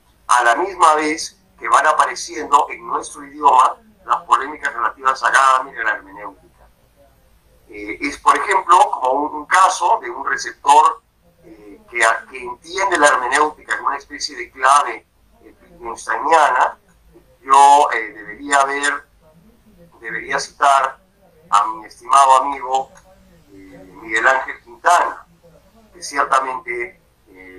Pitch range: 110-175 Hz